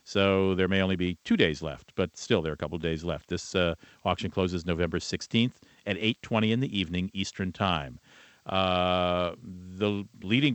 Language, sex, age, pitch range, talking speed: English, male, 50-69, 95-120 Hz, 190 wpm